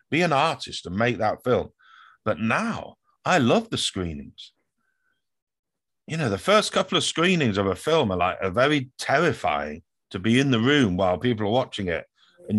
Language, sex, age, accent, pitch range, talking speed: English, male, 50-69, British, 110-165 Hz, 180 wpm